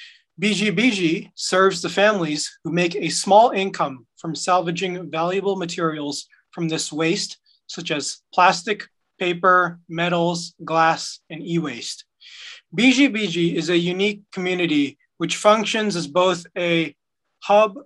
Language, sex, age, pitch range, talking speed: English, male, 30-49, 165-205 Hz, 120 wpm